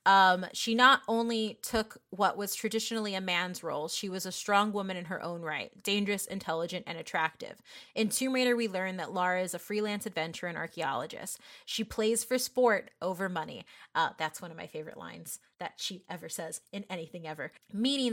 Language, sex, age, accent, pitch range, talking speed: English, female, 30-49, American, 180-215 Hz, 190 wpm